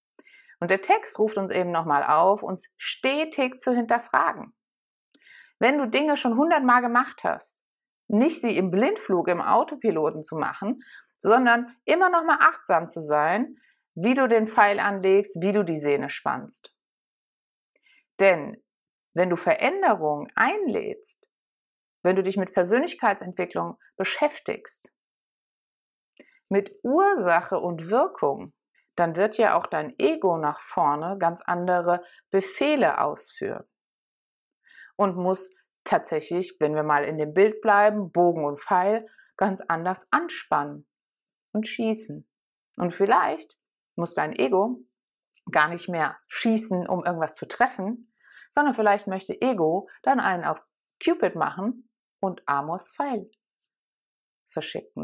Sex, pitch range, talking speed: female, 175-245 Hz, 125 wpm